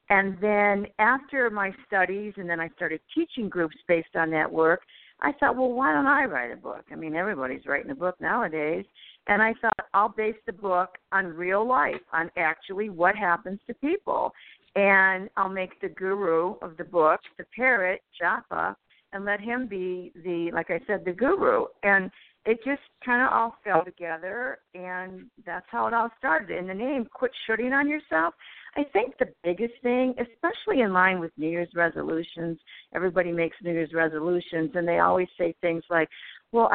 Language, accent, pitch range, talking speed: English, American, 175-250 Hz, 185 wpm